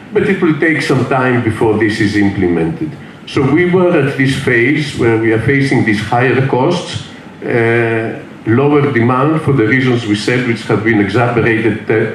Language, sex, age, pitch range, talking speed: English, male, 50-69, 115-140 Hz, 185 wpm